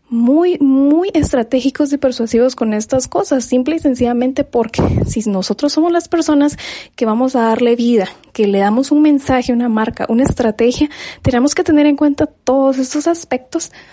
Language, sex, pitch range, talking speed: Spanish, female, 220-275 Hz, 170 wpm